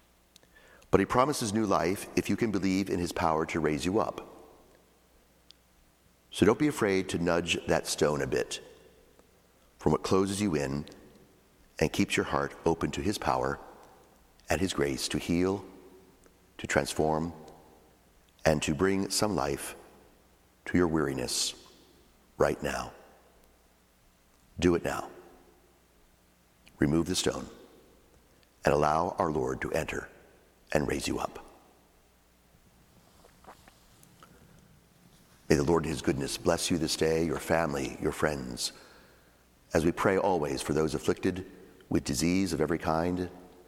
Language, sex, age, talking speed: English, male, 50-69, 135 wpm